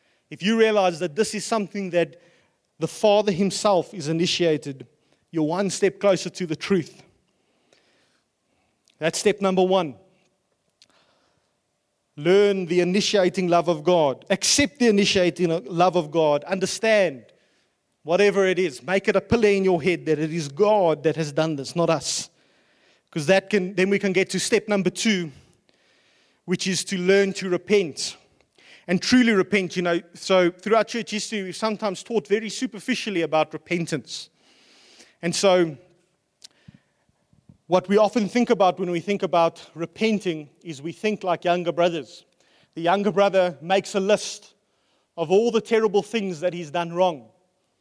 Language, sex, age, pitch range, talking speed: English, male, 30-49, 170-205 Hz, 155 wpm